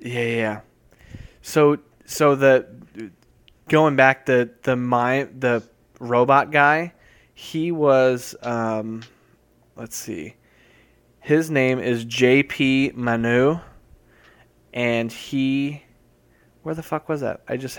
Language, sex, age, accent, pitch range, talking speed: English, male, 20-39, American, 115-135 Hz, 110 wpm